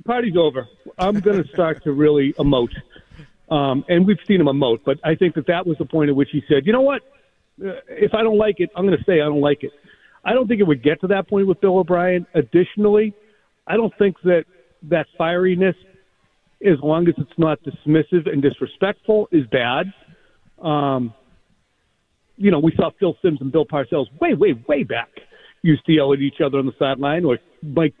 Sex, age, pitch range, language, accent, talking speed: male, 50-69, 145-195 Hz, English, American, 210 wpm